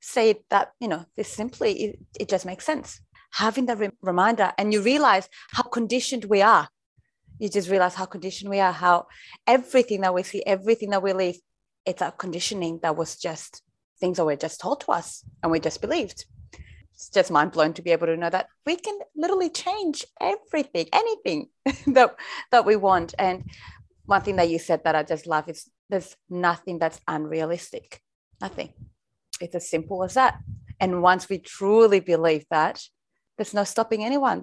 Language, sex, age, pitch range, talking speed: English, female, 30-49, 175-225 Hz, 185 wpm